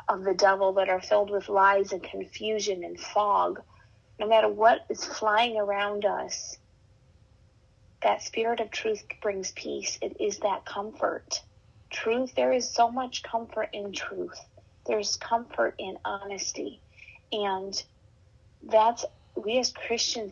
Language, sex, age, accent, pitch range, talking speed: English, female, 30-49, American, 180-215 Hz, 135 wpm